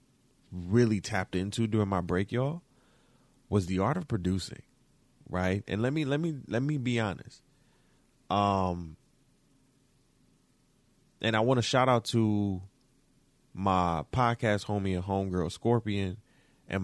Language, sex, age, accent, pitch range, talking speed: English, male, 30-49, American, 95-130 Hz, 130 wpm